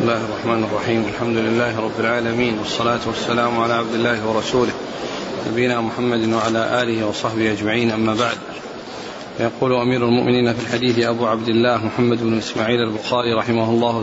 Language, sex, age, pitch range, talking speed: Arabic, male, 40-59, 120-130 Hz, 155 wpm